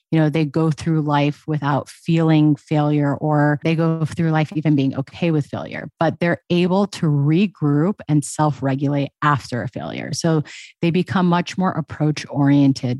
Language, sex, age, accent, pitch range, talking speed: English, female, 30-49, American, 145-165 Hz, 165 wpm